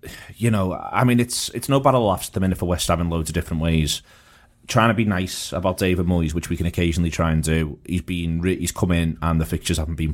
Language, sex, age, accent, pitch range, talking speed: English, male, 30-49, British, 80-90 Hz, 265 wpm